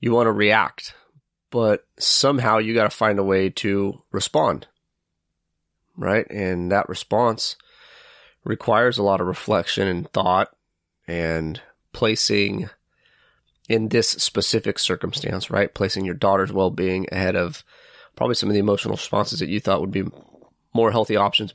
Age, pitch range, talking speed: 30-49, 95-110 Hz, 145 wpm